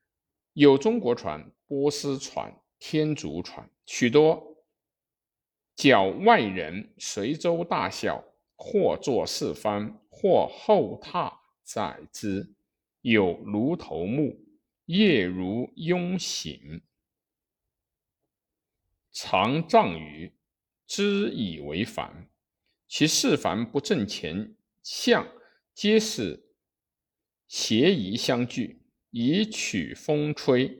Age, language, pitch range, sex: 60-79, Chinese, 120-200 Hz, male